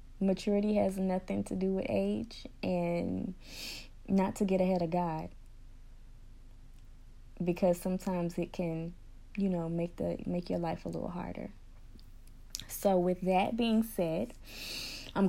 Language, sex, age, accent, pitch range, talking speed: English, female, 20-39, American, 150-200 Hz, 135 wpm